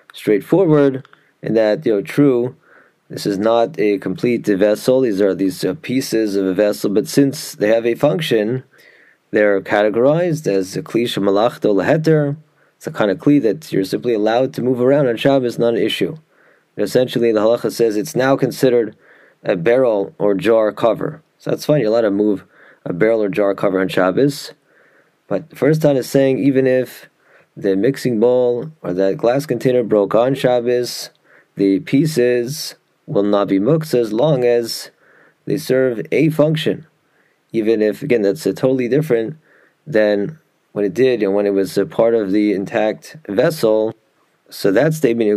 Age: 20-39